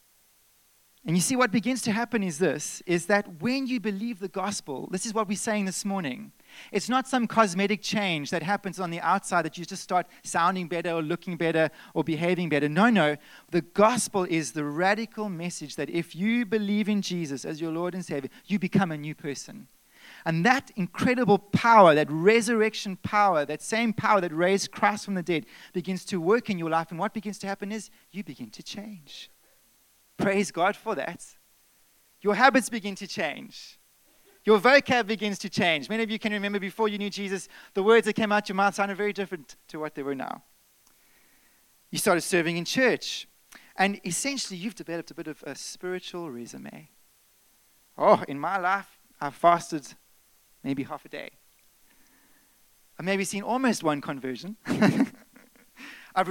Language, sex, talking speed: English, male, 180 wpm